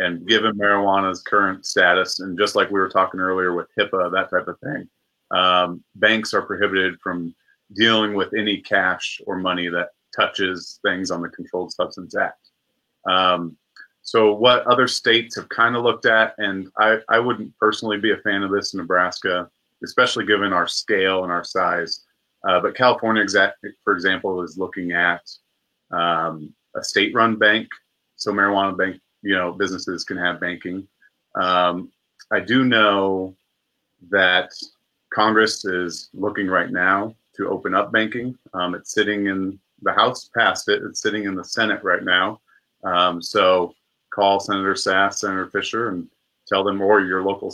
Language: English